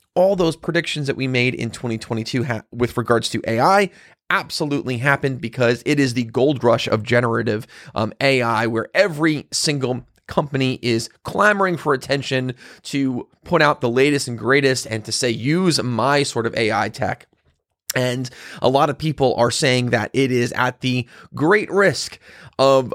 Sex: male